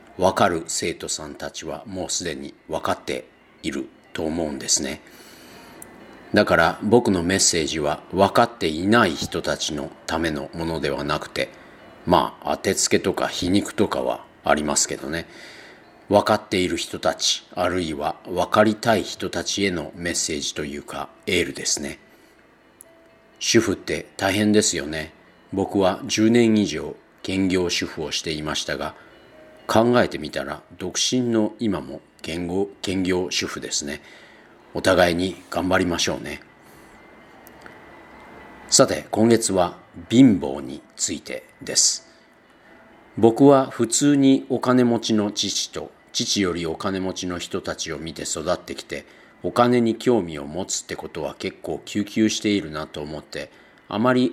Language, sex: Japanese, male